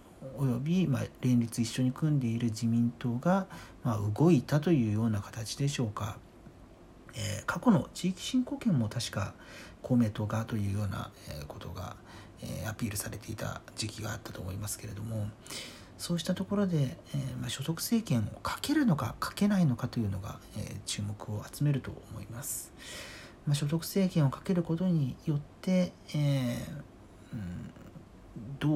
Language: Japanese